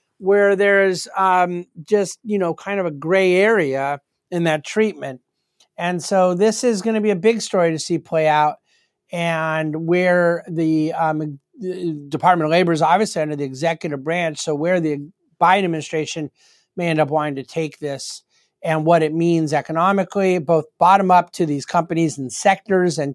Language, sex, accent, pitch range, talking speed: English, male, American, 150-205 Hz, 175 wpm